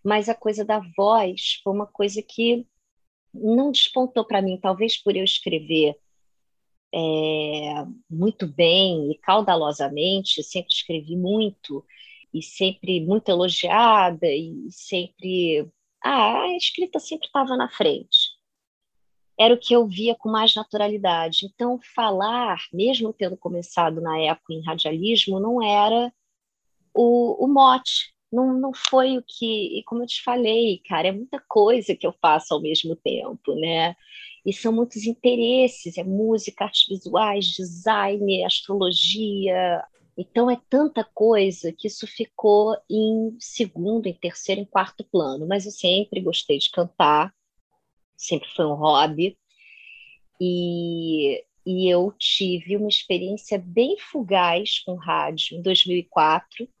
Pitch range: 175-230 Hz